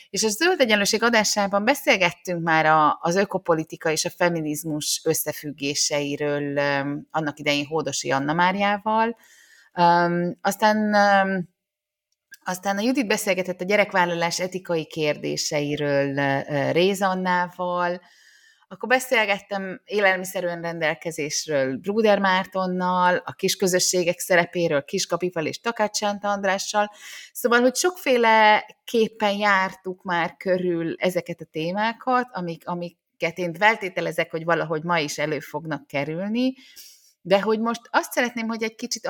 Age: 30-49